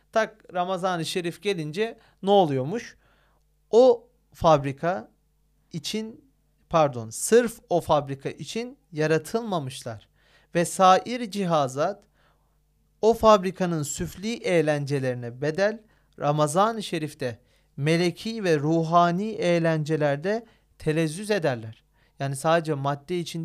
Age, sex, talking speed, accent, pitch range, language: 40-59, male, 90 wpm, native, 150-200 Hz, Turkish